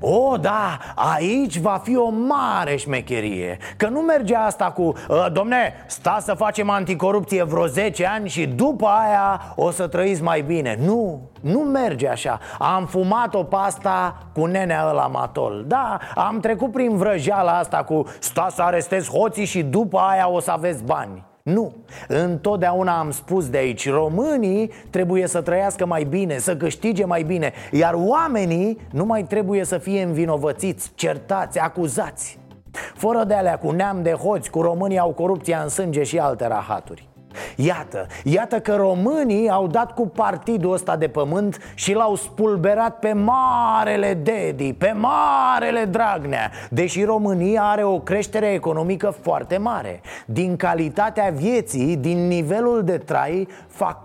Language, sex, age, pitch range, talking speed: Romanian, male, 30-49, 170-215 Hz, 155 wpm